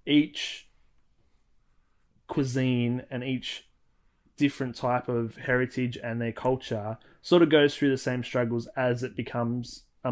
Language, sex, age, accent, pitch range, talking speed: English, male, 20-39, Australian, 115-130 Hz, 130 wpm